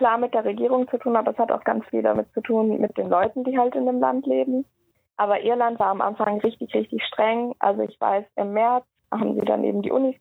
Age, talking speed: 20-39, 255 wpm